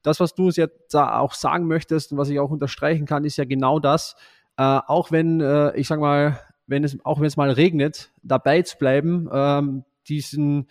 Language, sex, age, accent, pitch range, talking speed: German, male, 20-39, German, 140-165 Hz, 215 wpm